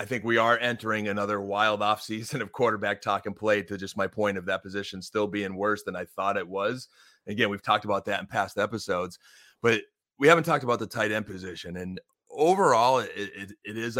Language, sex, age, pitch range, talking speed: English, male, 30-49, 105-125 Hz, 215 wpm